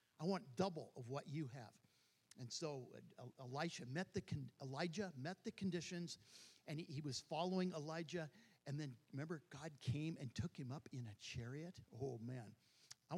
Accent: American